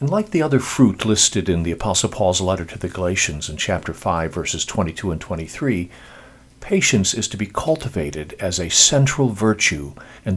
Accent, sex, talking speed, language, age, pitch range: American, male, 180 wpm, English, 50-69, 95-130 Hz